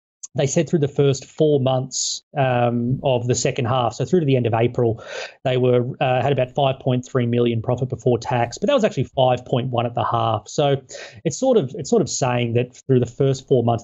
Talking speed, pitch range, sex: 220 wpm, 120-145 Hz, male